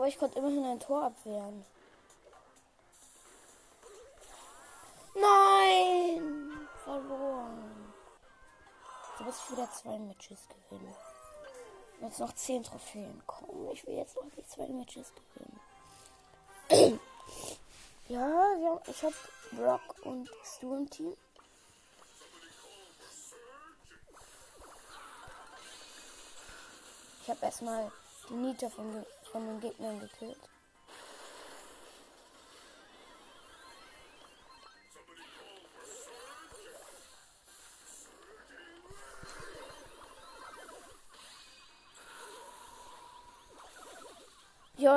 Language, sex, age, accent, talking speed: German, female, 20-39, German, 65 wpm